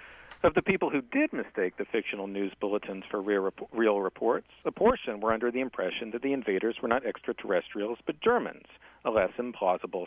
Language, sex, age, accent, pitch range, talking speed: English, male, 50-69, American, 105-135 Hz, 180 wpm